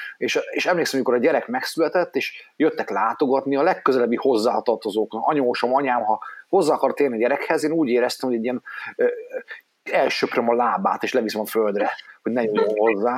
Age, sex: 30-49, male